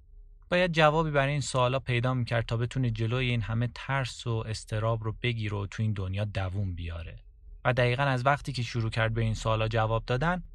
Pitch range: 100-130 Hz